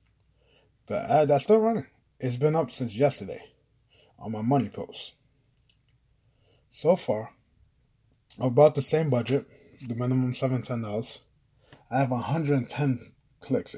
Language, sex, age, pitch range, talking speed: English, male, 20-39, 115-140 Hz, 125 wpm